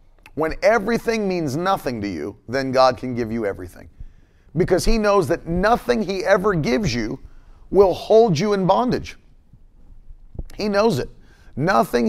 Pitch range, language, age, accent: 105-170 Hz, English, 40-59, American